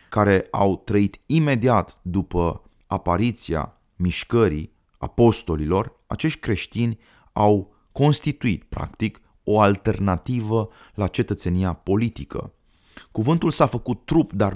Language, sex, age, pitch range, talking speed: Romanian, male, 30-49, 85-110 Hz, 95 wpm